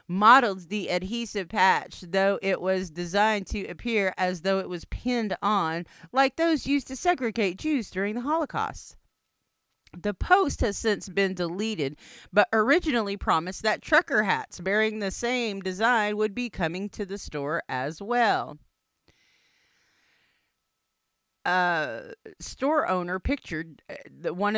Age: 40-59